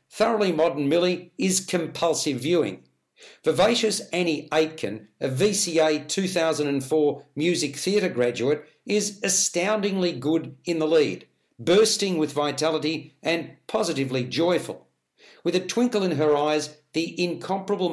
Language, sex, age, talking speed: English, male, 60-79, 115 wpm